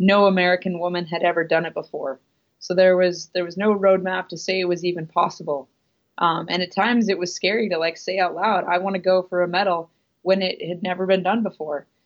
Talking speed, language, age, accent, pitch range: 230 wpm, English, 20-39, American, 170-190 Hz